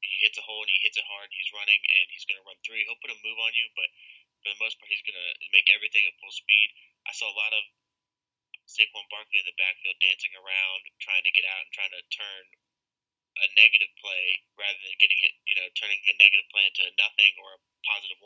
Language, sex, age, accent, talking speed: English, male, 20-39, American, 245 wpm